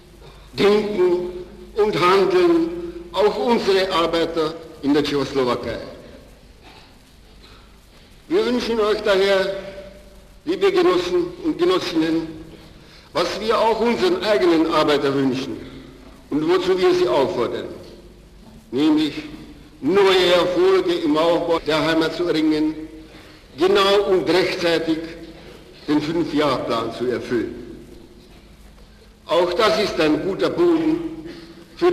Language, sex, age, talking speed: Czech, male, 60-79, 100 wpm